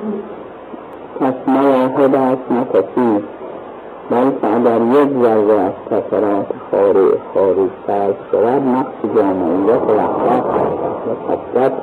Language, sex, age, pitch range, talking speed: Persian, male, 50-69, 120-135 Hz, 100 wpm